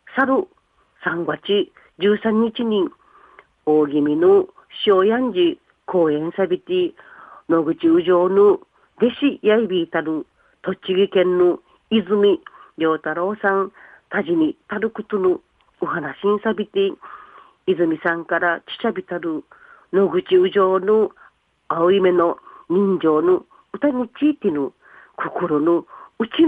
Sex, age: female, 40-59